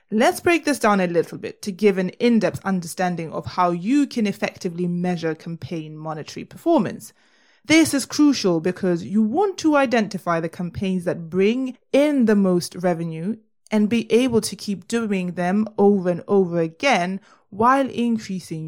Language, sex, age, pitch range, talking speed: English, female, 20-39, 175-235 Hz, 165 wpm